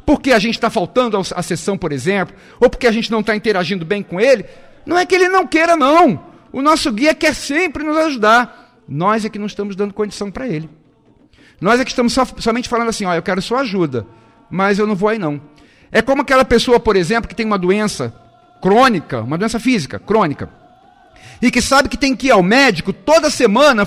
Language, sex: Portuguese, male